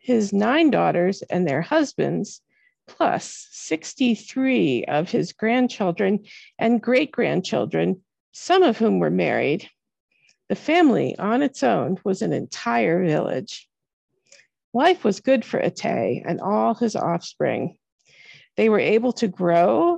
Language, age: English, 50-69